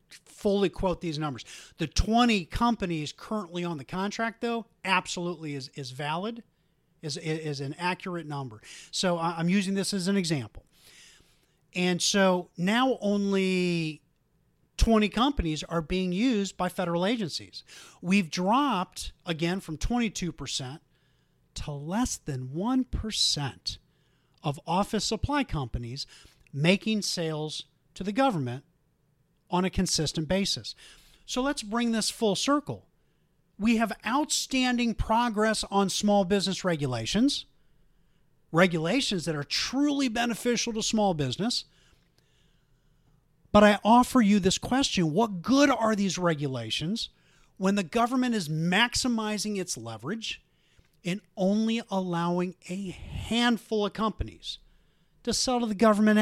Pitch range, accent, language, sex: 160-220 Hz, American, English, male